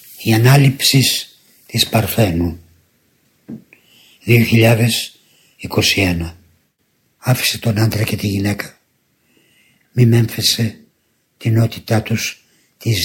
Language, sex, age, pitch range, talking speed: Greek, male, 60-79, 100-115 Hz, 80 wpm